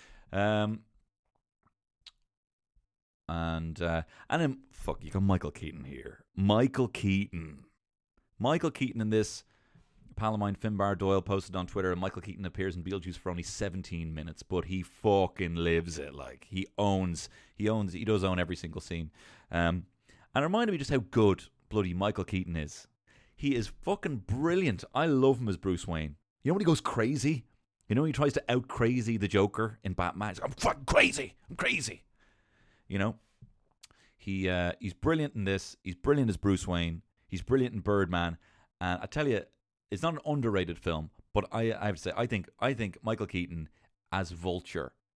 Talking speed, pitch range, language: 180 wpm, 85-110 Hz, English